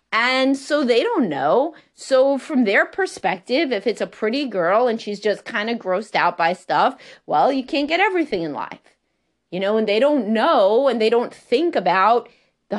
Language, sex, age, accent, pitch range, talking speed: English, female, 30-49, American, 190-265 Hz, 195 wpm